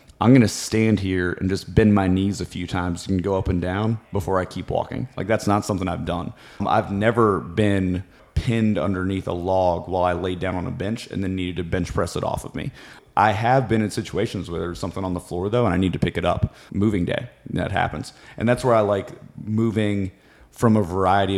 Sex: male